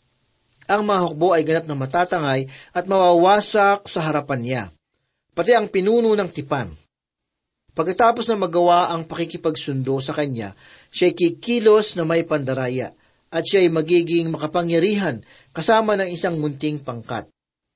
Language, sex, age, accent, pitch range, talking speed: Filipino, male, 40-59, native, 145-190 Hz, 125 wpm